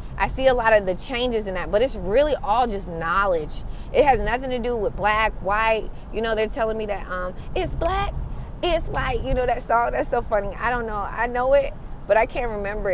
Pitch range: 210-265 Hz